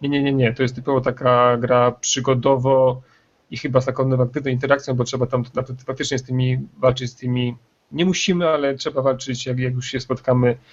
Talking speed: 195 wpm